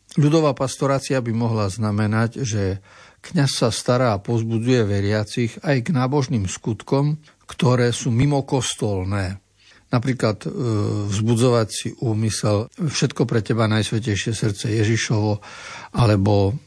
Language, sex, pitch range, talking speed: Slovak, male, 105-130 Hz, 110 wpm